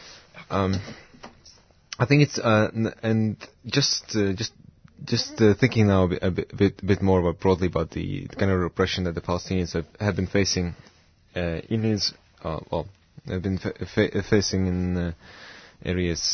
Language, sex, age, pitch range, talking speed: English, male, 20-39, 90-105 Hz, 145 wpm